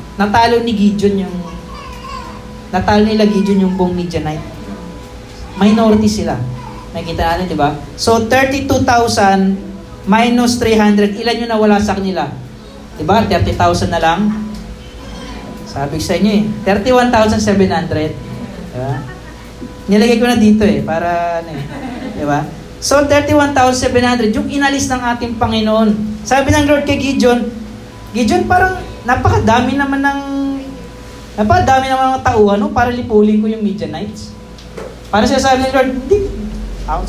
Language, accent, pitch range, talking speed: Filipino, native, 170-240 Hz, 140 wpm